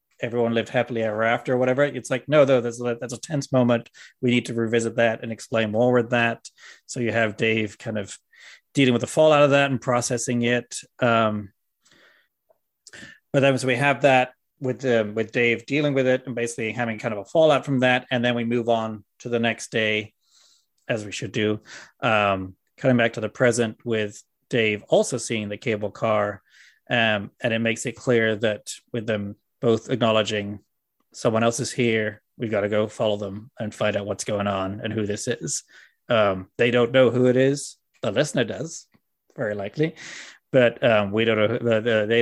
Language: English